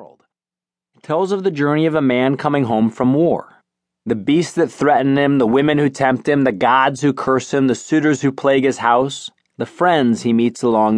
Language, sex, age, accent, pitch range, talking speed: English, male, 30-49, American, 110-185 Hz, 210 wpm